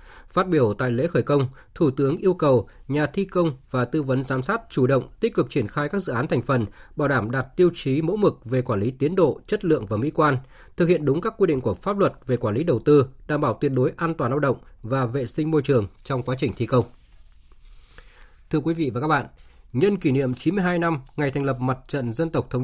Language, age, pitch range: Vietnamese, 20-39, 125-160 Hz